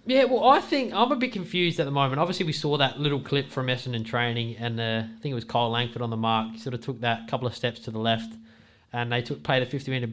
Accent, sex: Australian, male